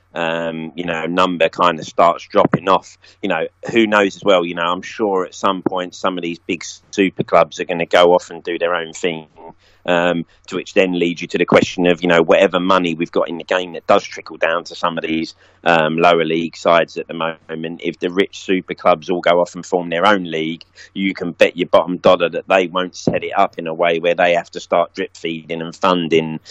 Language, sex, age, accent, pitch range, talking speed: English, male, 30-49, British, 85-90 Hz, 245 wpm